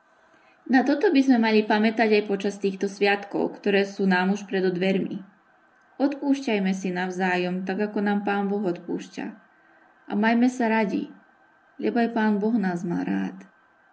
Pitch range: 195-245 Hz